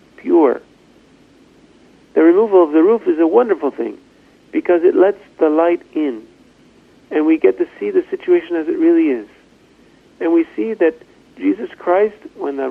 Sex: male